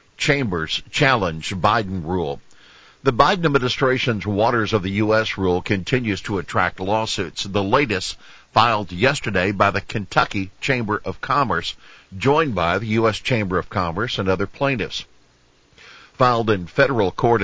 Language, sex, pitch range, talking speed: English, male, 95-120 Hz, 140 wpm